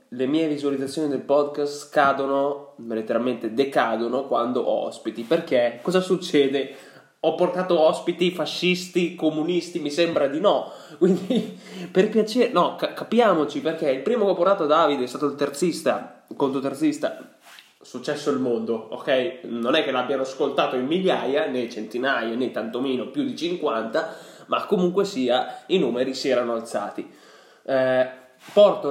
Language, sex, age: Italian, male, 20-39